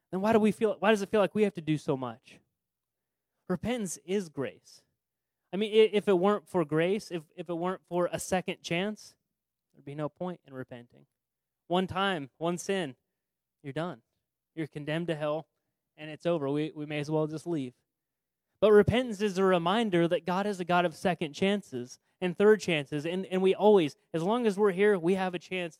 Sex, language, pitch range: male, English, 140-180 Hz